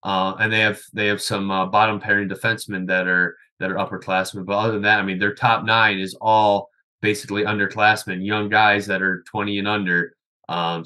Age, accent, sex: 20-39, American, male